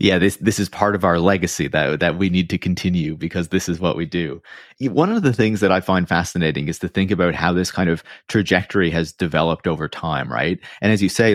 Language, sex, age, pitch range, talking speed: English, male, 30-49, 80-95 Hz, 250 wpm